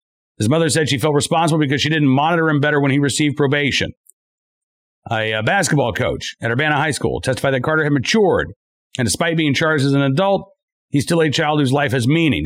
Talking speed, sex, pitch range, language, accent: 210 wpm, male, 135-180 Hz, English, American